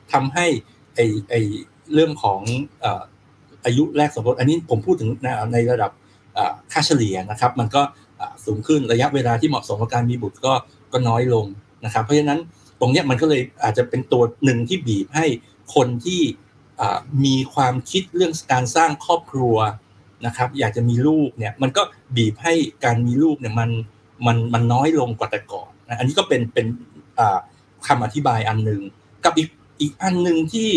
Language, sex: Thai, male